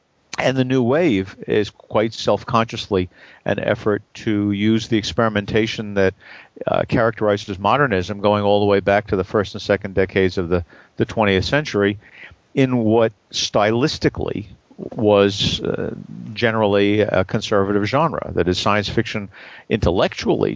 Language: English